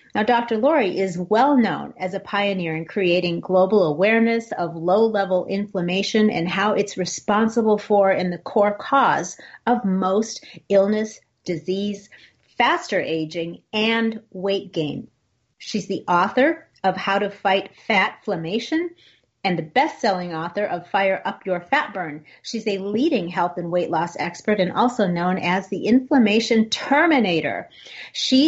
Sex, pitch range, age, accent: female, 180-225 Hz, 40-59, American